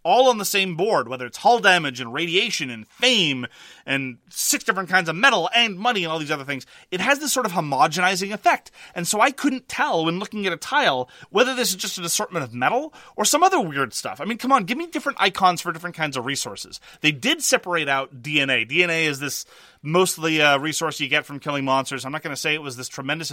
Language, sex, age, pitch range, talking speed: English, male, 30-49, 135-195 Hz, 240 wpm